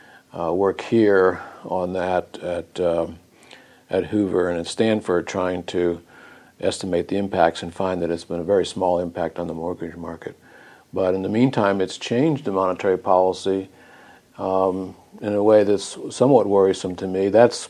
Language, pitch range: English, 85-95 Hz